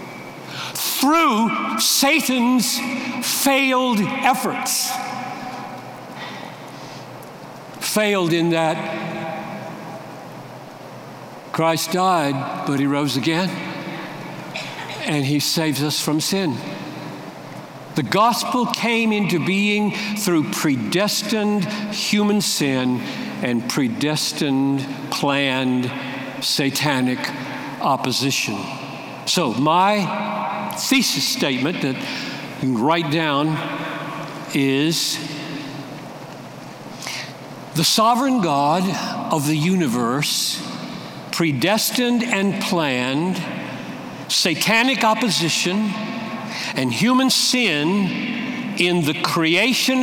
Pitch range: 145-220 Hz